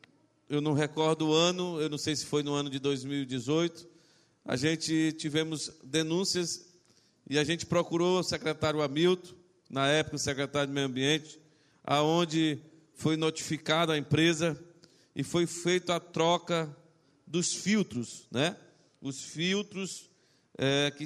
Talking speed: 135 wpm